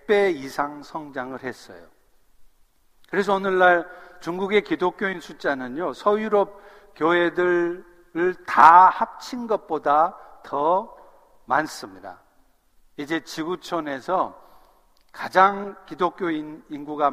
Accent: native